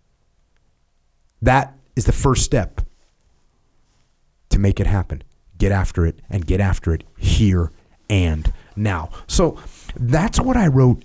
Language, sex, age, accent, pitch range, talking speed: English, male, 30-49, American, 100-140 Hz, 130 wpm